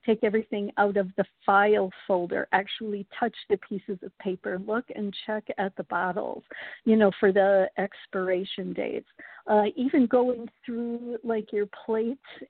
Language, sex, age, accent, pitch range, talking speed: English, female, 50-69, American, 195-225 Hz, 155 wpm